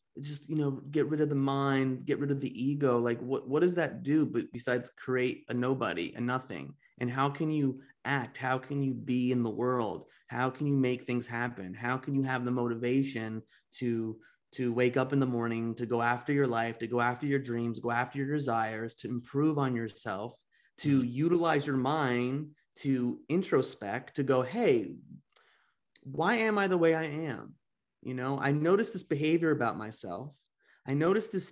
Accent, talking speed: American, 195 wpm